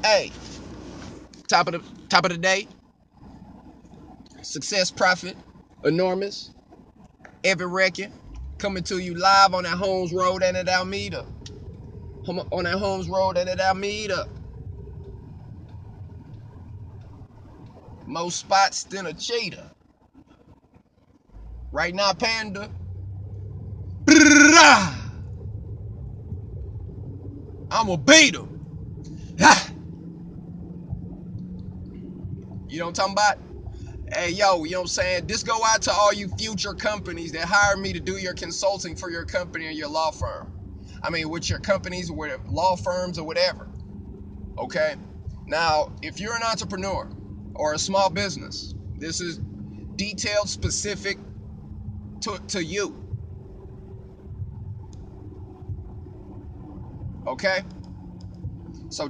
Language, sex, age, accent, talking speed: English, male, 30-49, American, 115 wpm